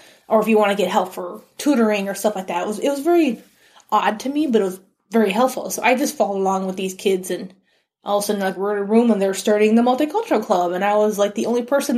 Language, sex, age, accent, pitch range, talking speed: English, female, 20-39, American, 195-255 Hz, 285 wpm